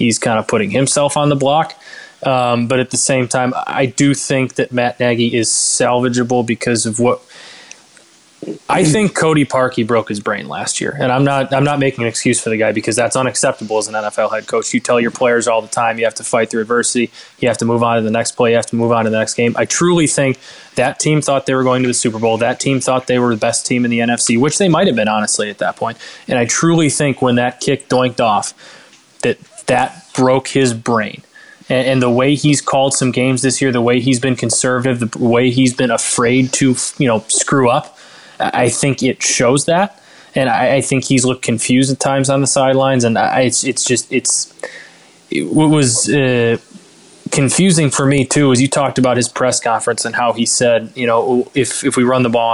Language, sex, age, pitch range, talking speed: English, male, 20-39, 115-135 Hz, 235 wpm